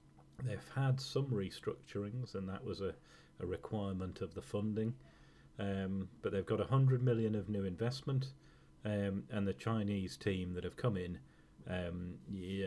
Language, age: English, 40-59